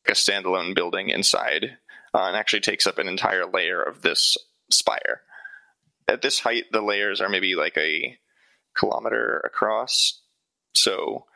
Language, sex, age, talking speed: English, male, 20-39, 145 wpm